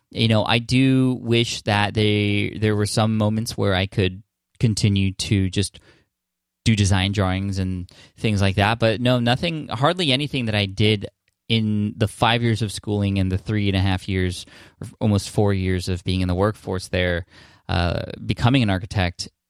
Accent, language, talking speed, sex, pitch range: American, English, 180 wpm, male, 95-115 Hz